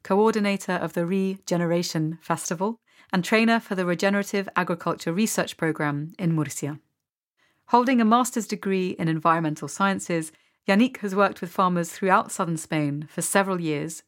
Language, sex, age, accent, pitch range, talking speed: English, female, 40-59, British, 160-200 Hz, 140 wpm